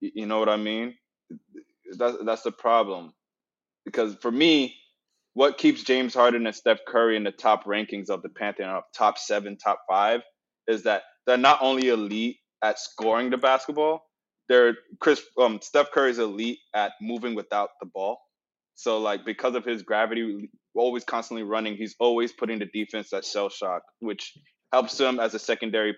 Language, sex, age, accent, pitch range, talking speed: English, male, 20-39, American, 105-130 Hz, 175 wpm